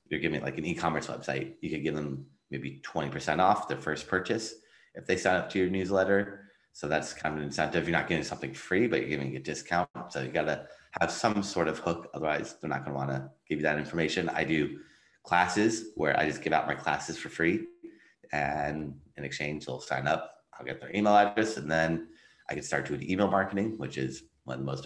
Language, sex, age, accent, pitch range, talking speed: English, male, 30-49, American, 70-95 Hz, 230 wpm